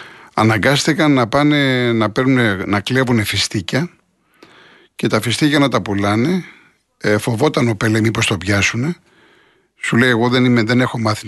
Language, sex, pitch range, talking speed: Greek, male, 100-130 Hz, 155 wpm